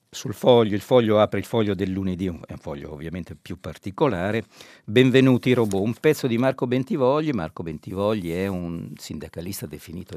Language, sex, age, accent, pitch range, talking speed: Italian, male, 60-79, native, 90-125 Hz, 165 wpm